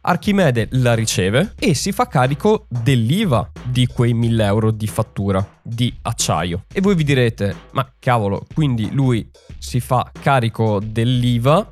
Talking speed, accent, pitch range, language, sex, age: 145 wpm, native, 115-155 Hz, Italian, male, 20-39